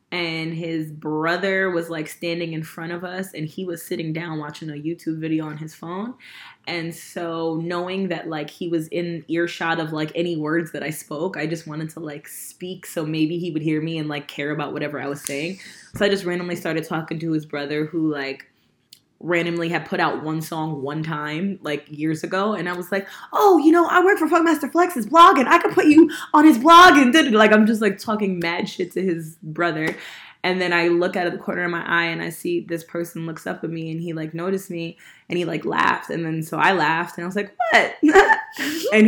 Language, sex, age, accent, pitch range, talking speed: English, female, 20-39, American, 160-195 Hz, 235 wpm